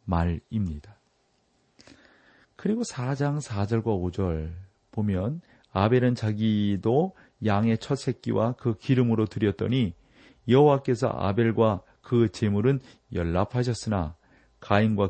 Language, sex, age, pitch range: Korean, male, 40-59, 95-125 Hz